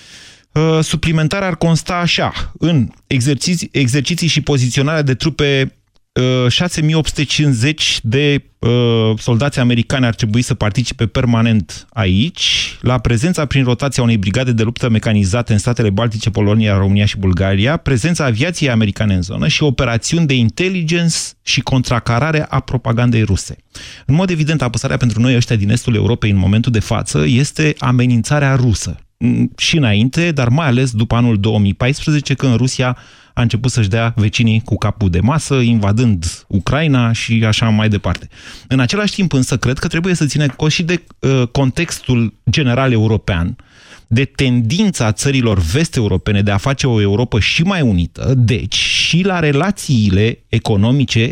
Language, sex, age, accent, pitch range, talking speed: Romanian, male, 30-49, native, 110-140 Hz, 145 wpm